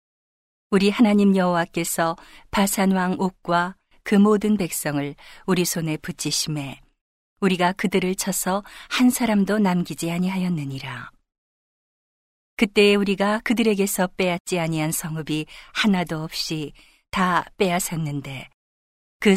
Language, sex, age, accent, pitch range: Korean, female, 40-59, native, 160-200 Hz